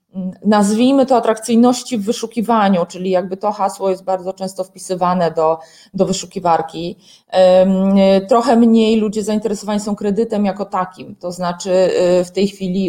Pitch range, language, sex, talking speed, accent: 175-215 Hz, Polish, female, 135 wpm, native